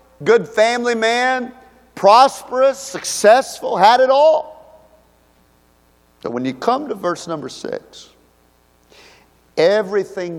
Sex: male